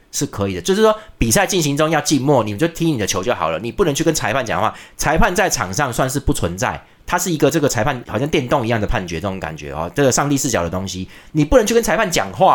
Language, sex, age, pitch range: Chinese, male, 30-49, 100-165 Hz